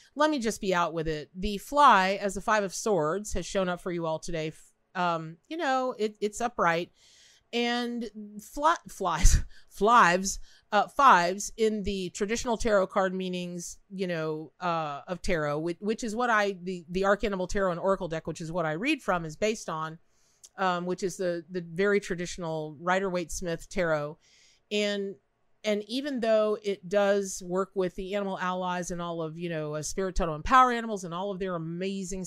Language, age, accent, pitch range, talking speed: English, 40-59, American, 175-220 Hz, 190 wpm